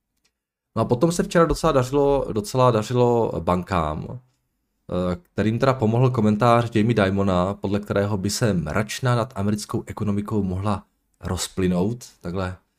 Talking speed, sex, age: 120 wpm, male, 20-39